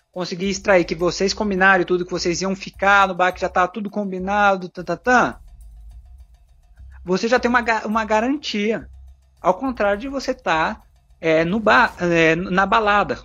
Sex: male